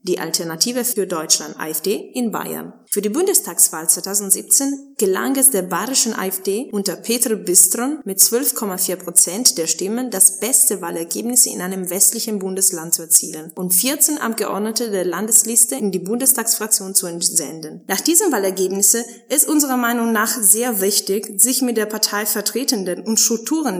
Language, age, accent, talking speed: German, 20-39, German, 150 wpm